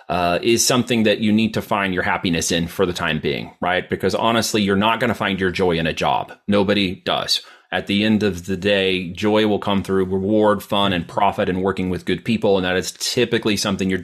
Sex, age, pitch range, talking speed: male, 30-49, 95-110 Hz, 235 wpm